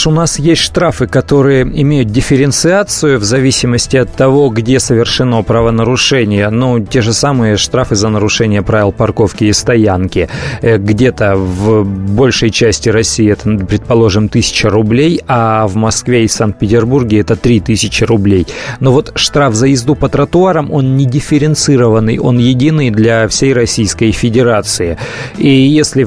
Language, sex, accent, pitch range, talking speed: Russian, male, native, 110-135 Hz, 140 wpm